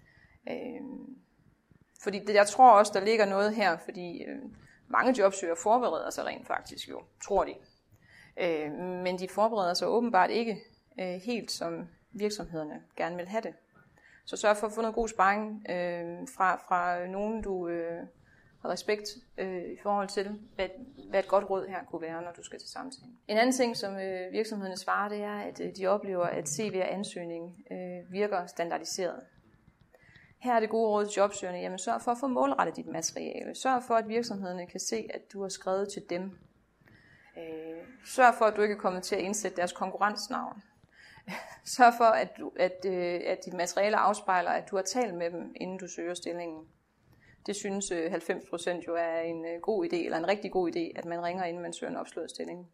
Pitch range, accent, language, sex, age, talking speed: 175-220 Hz, native, Danish, female, 30-49, 175 wpm